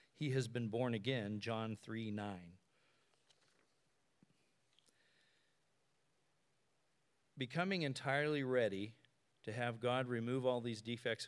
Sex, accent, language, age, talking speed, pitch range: male, American, English, 40-59, 95 wpm, 115-140 Hz